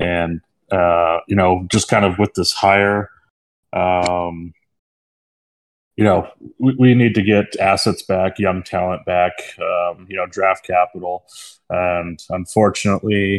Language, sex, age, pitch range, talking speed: English, male, 20-39, 90-100 Hz, 135 wpm